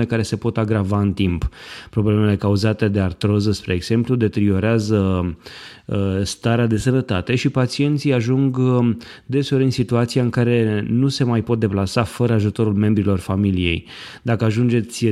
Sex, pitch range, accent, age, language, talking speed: male, 105-120 Hz, native, 20-39, Romanian, 140 wpm